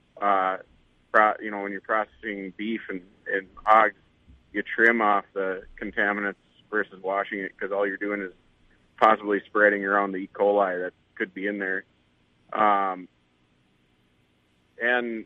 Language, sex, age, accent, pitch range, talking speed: English, male, 30-49, American, 90-110 Hz, 140 wpm